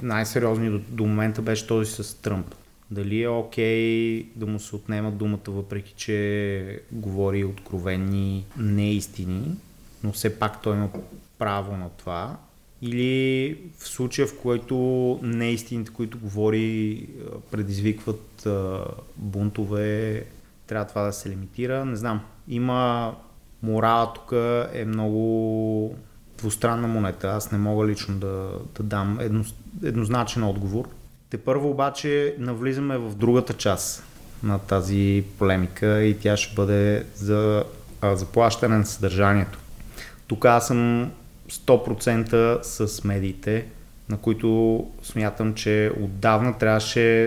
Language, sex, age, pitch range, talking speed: Bulgarian, male, 30-49, 105-115 Hz, 115 wpm